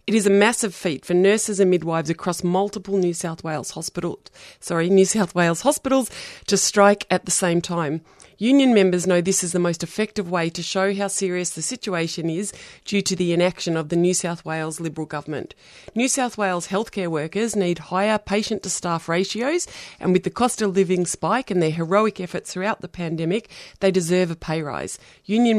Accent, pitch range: Australian, 170-200 Hz